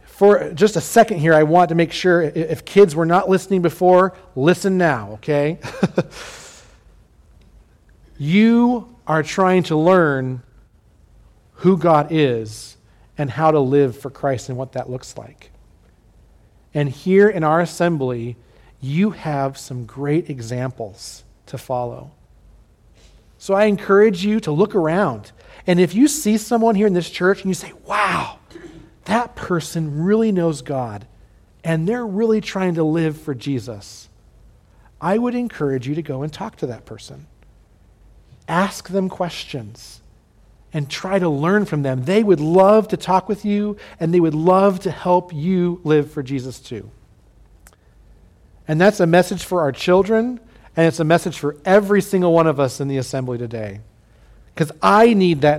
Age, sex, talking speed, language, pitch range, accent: 40-59, male, 160 wpm, English, 130-190 Hz, American